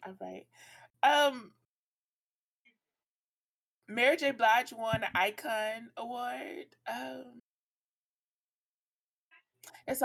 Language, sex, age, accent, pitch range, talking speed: English, female, 20-39, American, 165-210 Hz, 80 wpm